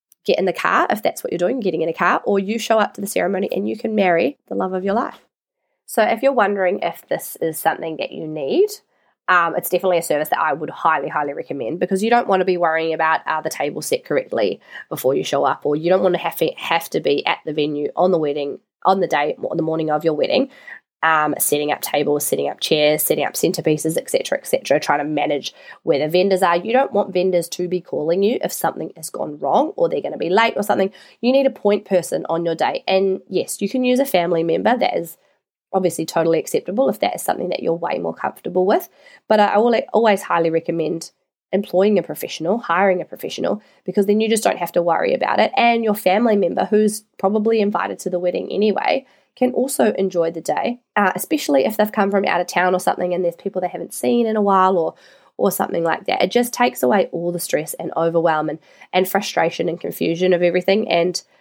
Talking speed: 240 wpm